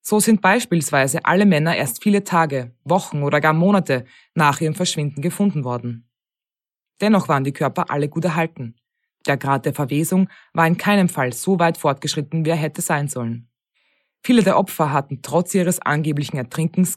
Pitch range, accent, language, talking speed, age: 135-180 Hz, German, German, 170 wpm, 20-39